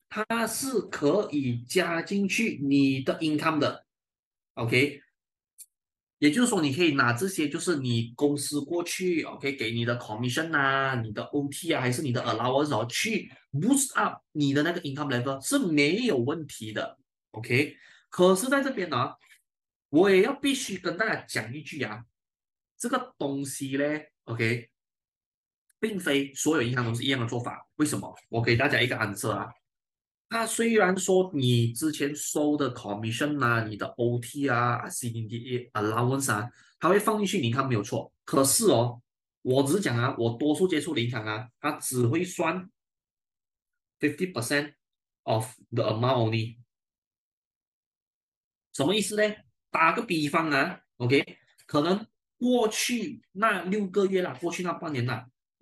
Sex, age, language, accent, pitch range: male, 20-39, Chinese, native, 120-185 Hz